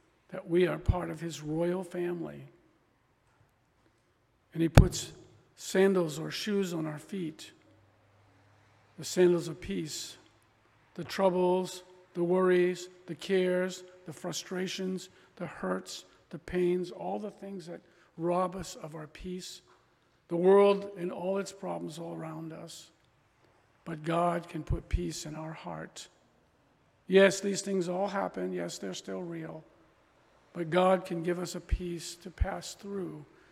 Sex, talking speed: male, 140 wpm